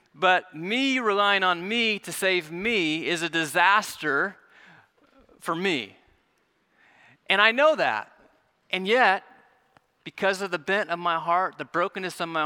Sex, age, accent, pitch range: male, 30-49, American, 170-200 Hz